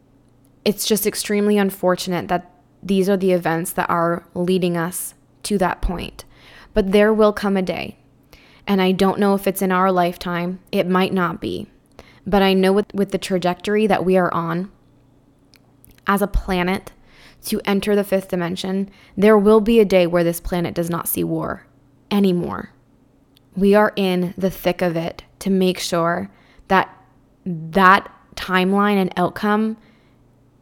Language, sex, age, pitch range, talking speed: English, female, 20-39, 170-195 Hz, 160 wpm